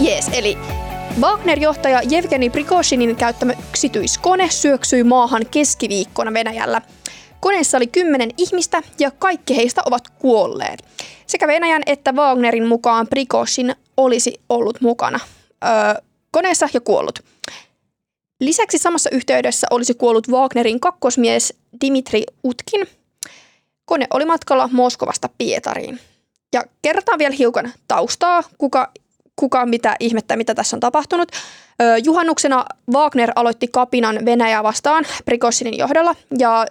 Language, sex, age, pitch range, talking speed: Finnish, female, 20-39, 235-300 Hz, 115 wpm